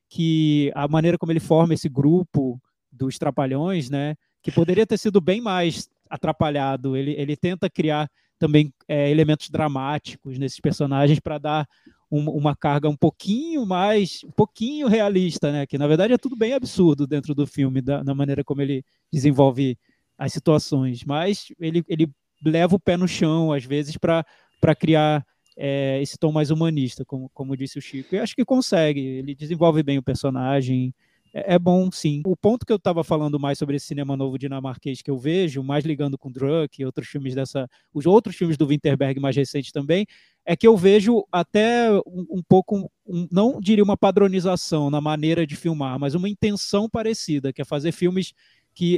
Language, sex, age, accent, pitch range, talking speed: Portuguese, male, 20-39, Brazilian, 140-185 Hz, 185 wpm